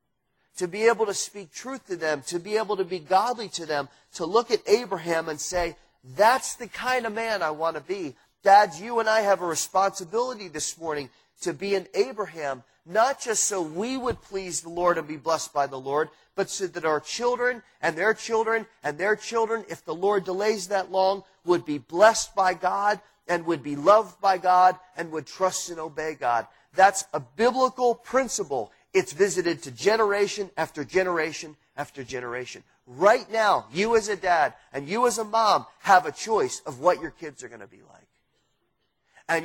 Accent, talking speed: American, 195 wpm